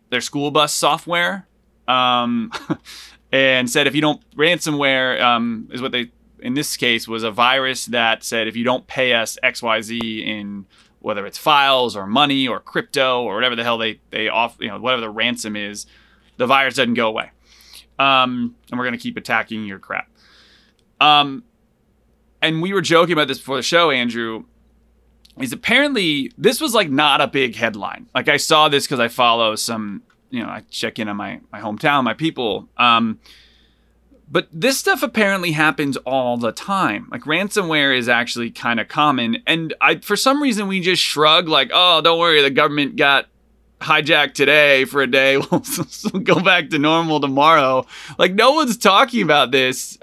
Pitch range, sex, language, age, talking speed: 120-170 Hz, male, English, 20-39, 180 wpm